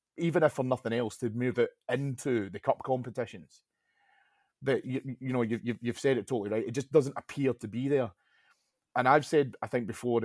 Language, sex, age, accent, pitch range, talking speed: English, male, 30-49, British, 110-130 Hz, 205 wpm